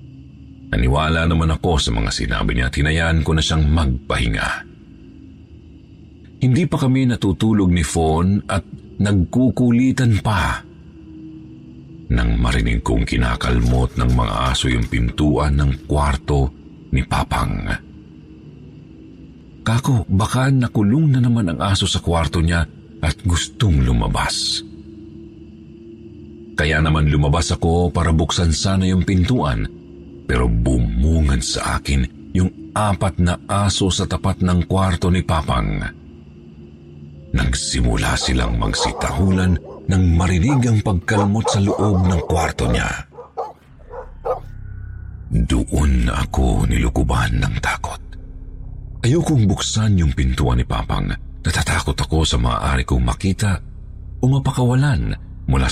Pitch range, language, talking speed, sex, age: 70-100 Hz, Filipino, 110 wpm, male, 50-69